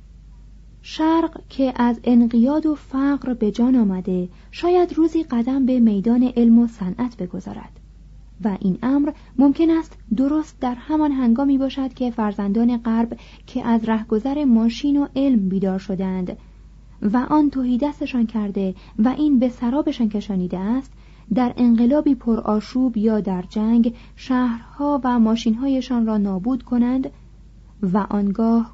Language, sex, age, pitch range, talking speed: Persian, female, 30-49, 215-260 Hz, 135 wpm